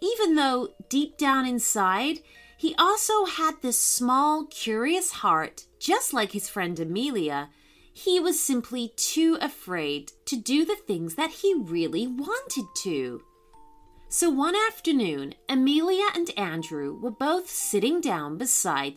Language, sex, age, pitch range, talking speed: English, female, 30-49, 190-305 Hz, 135 wpm